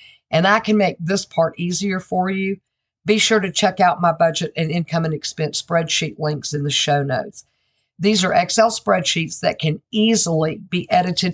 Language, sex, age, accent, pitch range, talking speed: English, female, 50-69, American, 155-190 Hz, 185 wpm